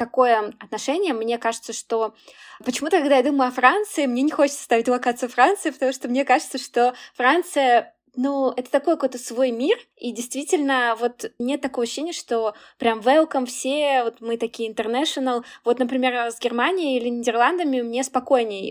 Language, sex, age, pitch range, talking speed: Russian, female, 20-39, 220-255 Hz, 160 wpm